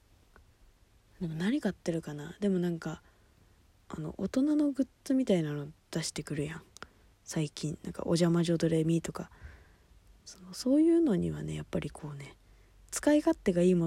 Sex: female